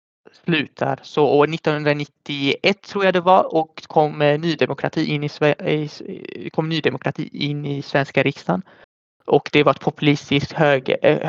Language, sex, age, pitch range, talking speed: Swedish, male, 20-39, 145-165 Hz, 120 wpm